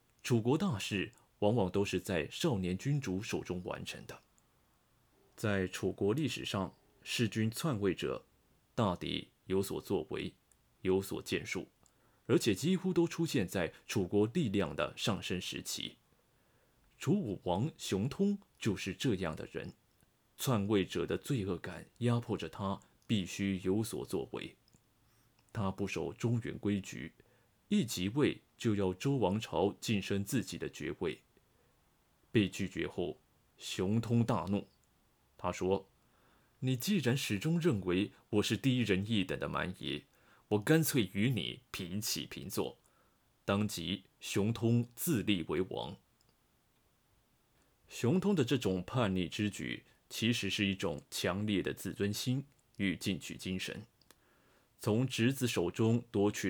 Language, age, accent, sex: Chinese, 20-39, native, male